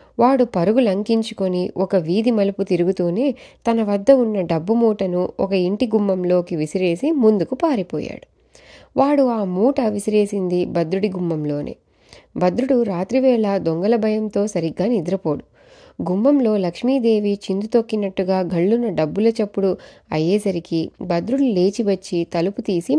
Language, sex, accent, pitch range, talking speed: Telugu, female, native, 165-215 Hz, 110 wpm